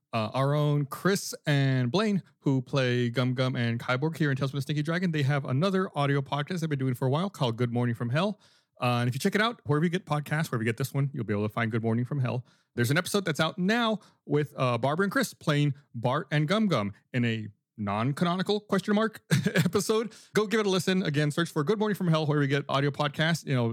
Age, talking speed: 30-49, 245 wpm